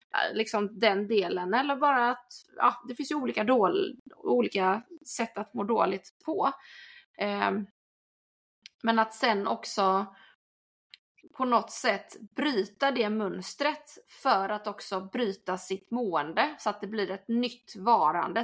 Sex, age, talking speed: female, 20-39, 135 wpm